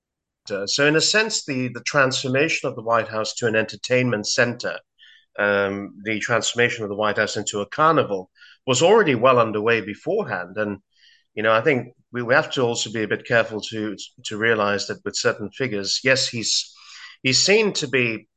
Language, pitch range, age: English, 105-130 Hz, 30-49